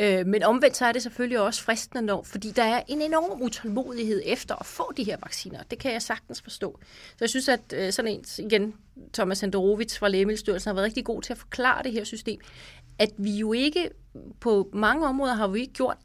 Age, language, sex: 30-49, English, female